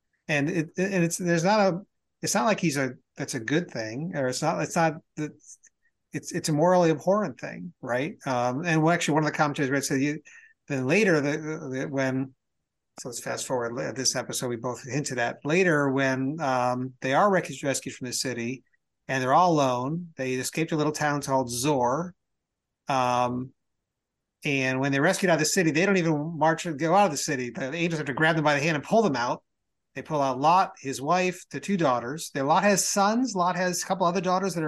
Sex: male